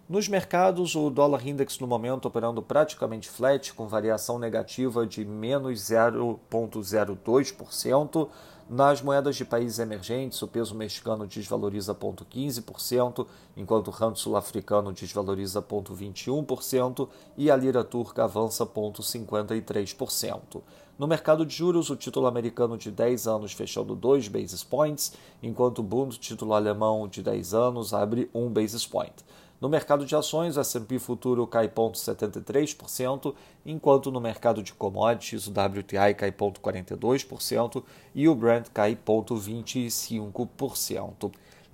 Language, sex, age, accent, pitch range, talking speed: Portuguese, male, 40-59, Brazilian, 110-135 Hz, 125 wpm